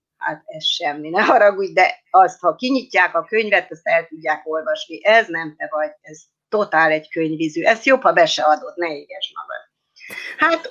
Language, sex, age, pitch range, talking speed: Hungarian, female, 30-49, 170-255 Hz, 185 wpm